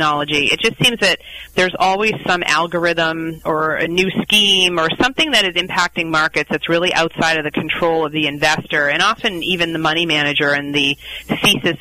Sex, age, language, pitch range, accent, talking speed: female, 30-49, English, 160-185 Hz, American, 185 wpm